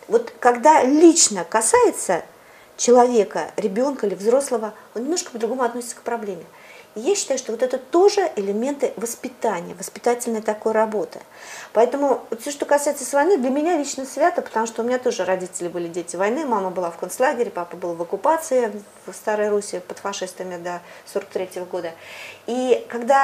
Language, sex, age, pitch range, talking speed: Russian, female, 40-59, 195-265 Hz, 160 wpm